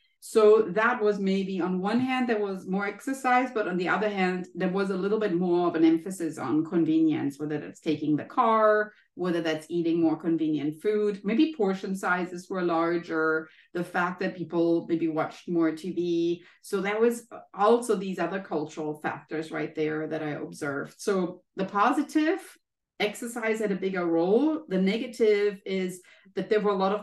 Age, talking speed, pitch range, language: 30-49, 180 wpm, 165-210 Hz, English